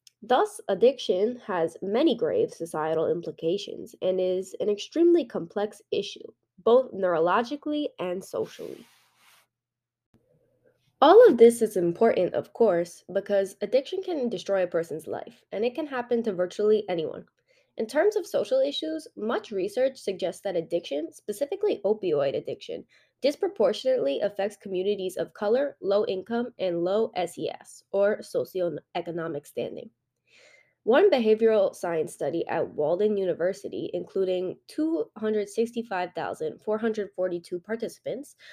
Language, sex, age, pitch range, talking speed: English, female, 20-39, 190-315 Hz, 115 wpm